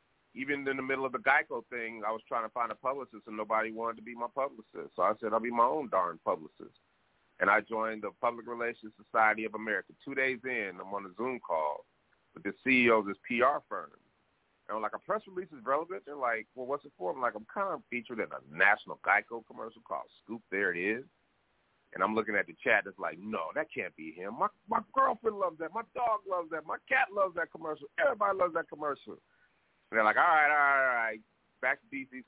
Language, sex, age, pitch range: English, male, 30-49, 110-140 Hz